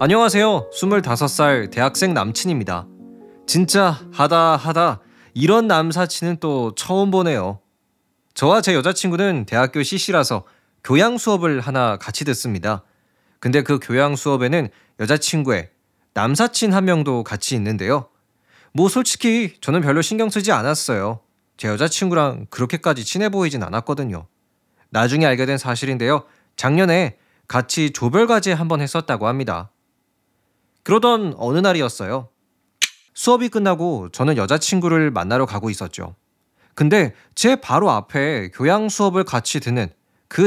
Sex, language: male, Korean